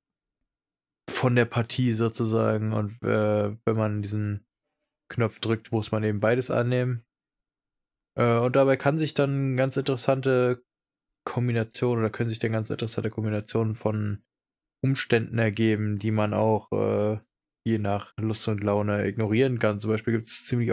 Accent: German